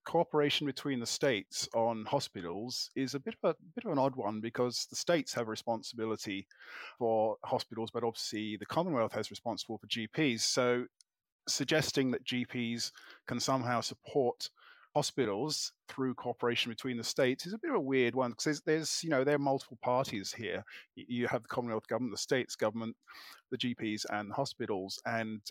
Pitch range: 110-135 Hz